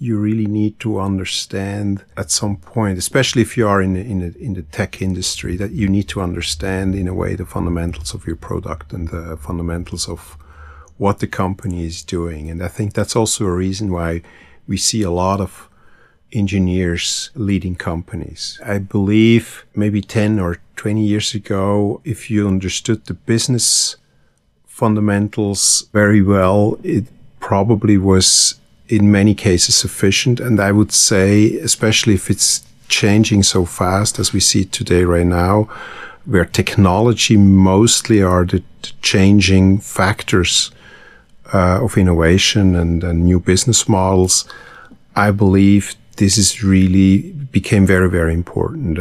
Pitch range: 90-105 Hz